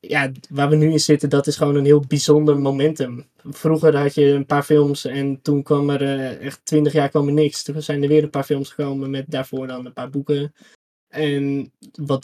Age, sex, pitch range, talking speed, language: 20-39, male, 140-150 Hz, 225 wpm, Dutch